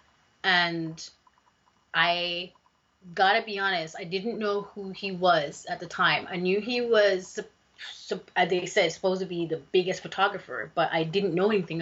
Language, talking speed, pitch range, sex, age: English, 170 wpm, 170-195 Hz, female, 30-49